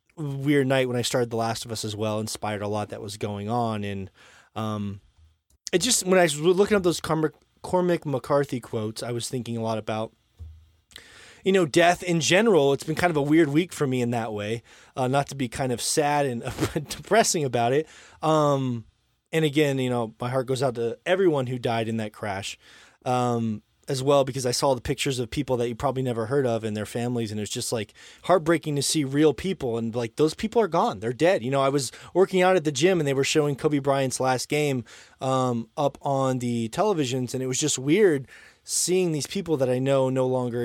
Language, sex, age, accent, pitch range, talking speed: English, male, 20-39, American, 115-150 Hz, 225 wpm